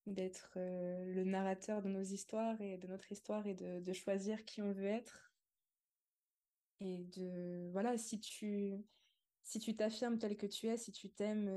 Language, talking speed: French, 175 wpm